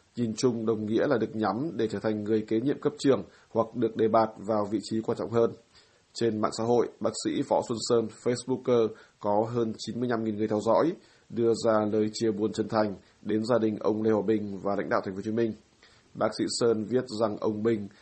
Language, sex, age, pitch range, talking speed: Vietnamese, male, 20-39, 105-115 Hz, 220 wpm